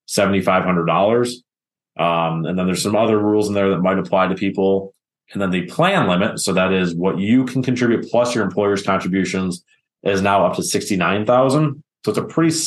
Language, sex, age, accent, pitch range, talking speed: English, male, 20-39, American, 90-105 Hz, 190 wpm